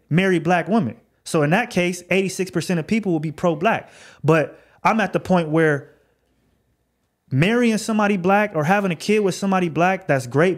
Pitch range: 150-185 Hz